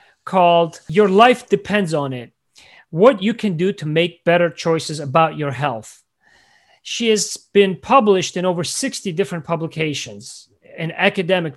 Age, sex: 40-59, male